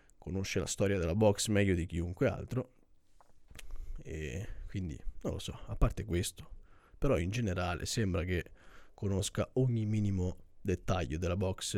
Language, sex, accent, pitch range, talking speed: Italian, male, native, 85-105 Hz, 145 wpm